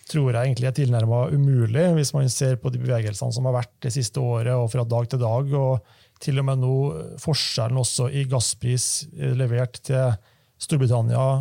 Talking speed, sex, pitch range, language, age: 195 wpm, male, 120-135 Hz, English, 30-49